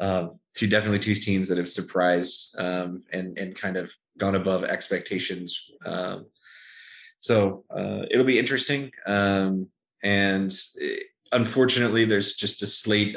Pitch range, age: 90-100 Hz, 20-39